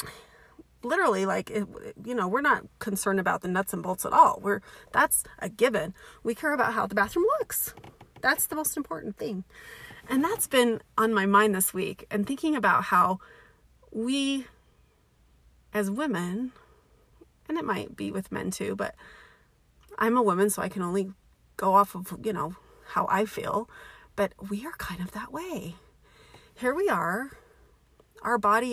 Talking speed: 165 wpm